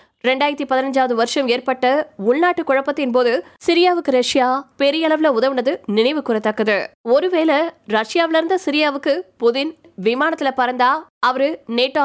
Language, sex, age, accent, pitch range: Tamil, female, 20-39, native, 240-305 Hz